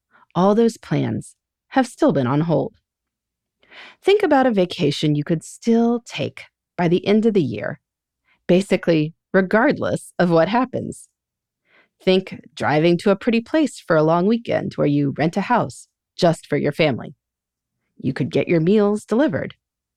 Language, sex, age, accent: English, female, 30-49, American